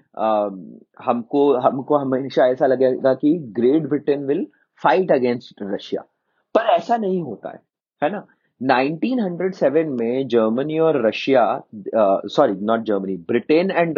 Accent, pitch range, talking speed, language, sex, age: Indian, 125-160 Hz, 110 wpm, English, male, 30-49